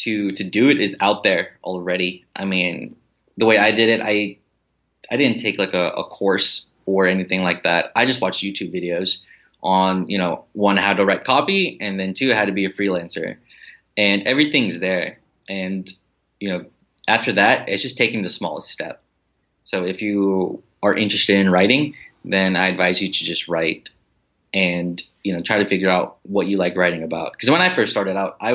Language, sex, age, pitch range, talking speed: English, male, 20-39, 90-105 Hz, 200 wpm